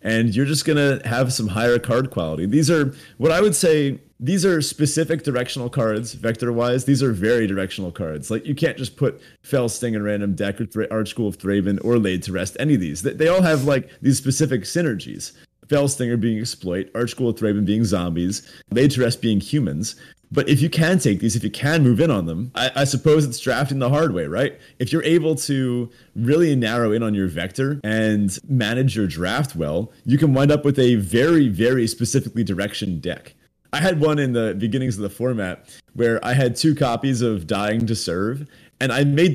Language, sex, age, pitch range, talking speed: English, male, 30-49, 110-145 Hz, 220 wpm